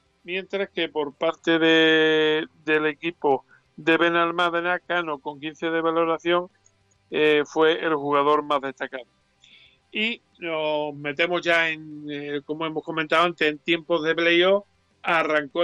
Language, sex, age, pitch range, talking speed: Spanish, male, 50-69, 150-170 Hz, 135 wpm